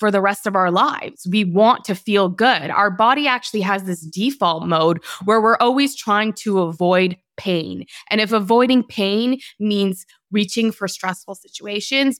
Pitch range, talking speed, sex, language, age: 185-225 Hz, 165 wpm, female, English, 20-39